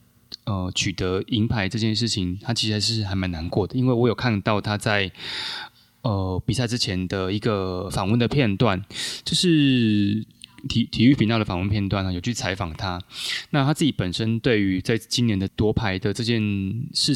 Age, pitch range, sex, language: 20-39, 95-120 Hz, male, Chinese